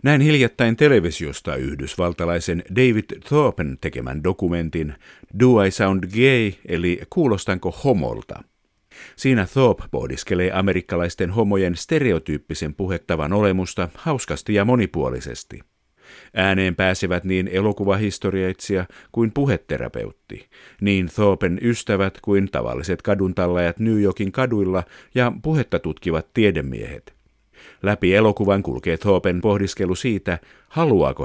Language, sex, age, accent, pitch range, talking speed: Finnish, male, 50-69, native, 85-110 Hz, 100 wpm